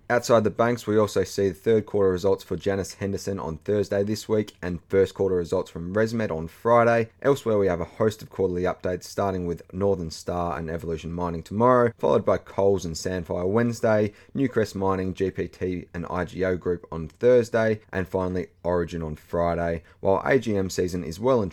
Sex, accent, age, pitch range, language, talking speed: male, Australian, 30-49, 85-100 Hz, English, 185 wpm